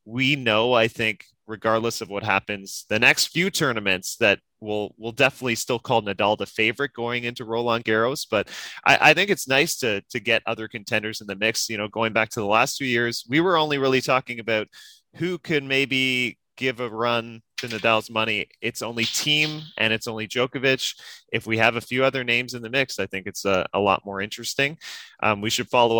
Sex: male